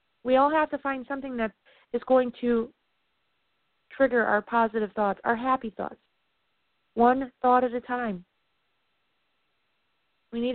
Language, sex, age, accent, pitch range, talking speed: English, female, 40-59, American, 220-265 Hz, 135 wpm